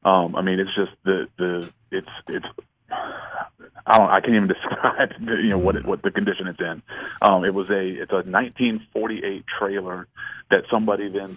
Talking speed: 190 wpm